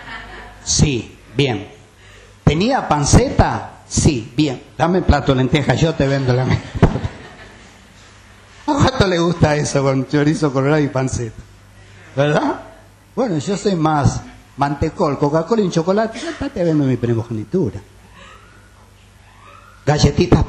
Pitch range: 105-155 Hz